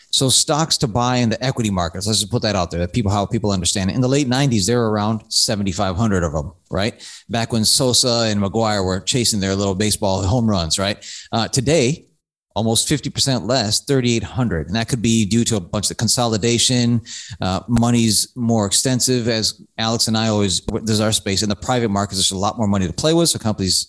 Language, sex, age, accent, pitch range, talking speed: English, male, 30-49, American, 105-140 Hz, 215 wpm